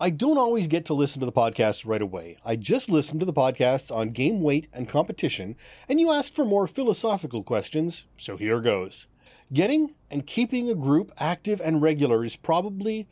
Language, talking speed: English, 190 wpm